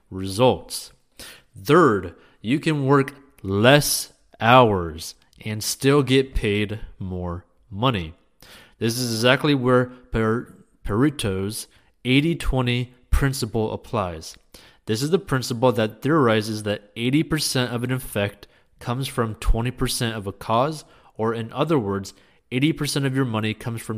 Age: 30-49